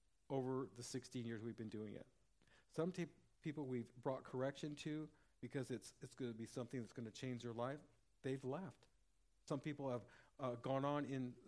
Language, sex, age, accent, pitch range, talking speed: English, male, 50-69, American, 120-145 Hz, 195 wpm